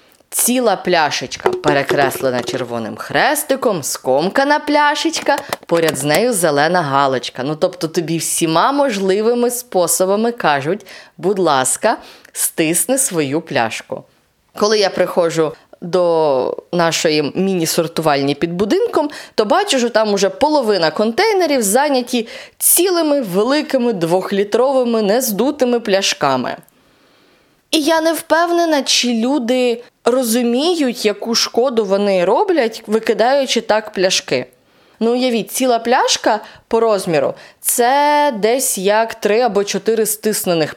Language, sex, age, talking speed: Ukrainian, female, 20-39, 105 wpm